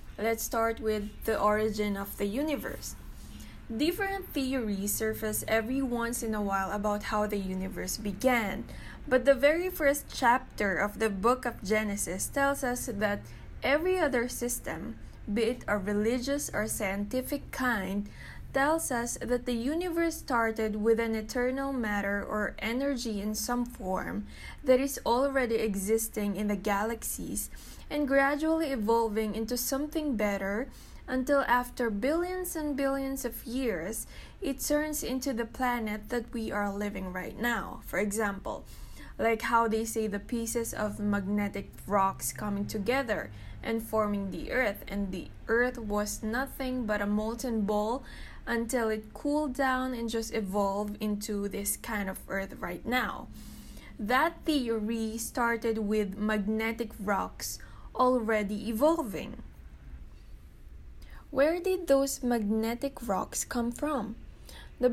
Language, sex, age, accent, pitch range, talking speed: English, female, 20-39, Filipino, 210-255 Hz, 135 wpm